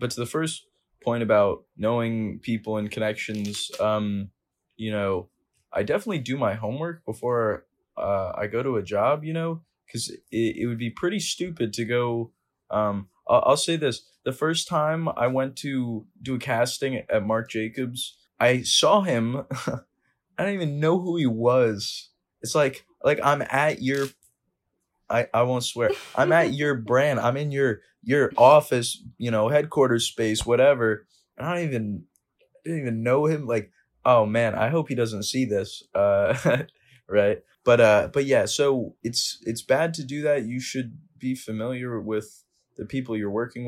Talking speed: 175 wpm